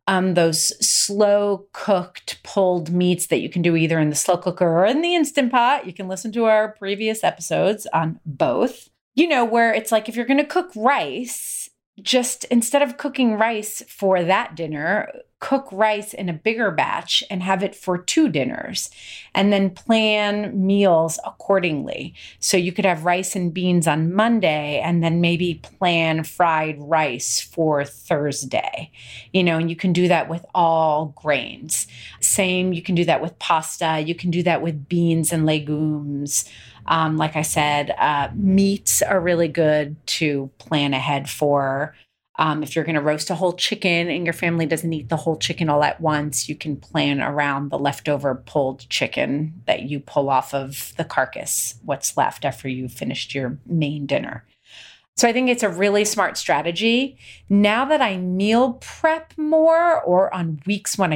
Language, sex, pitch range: English, female, 155-220 Hz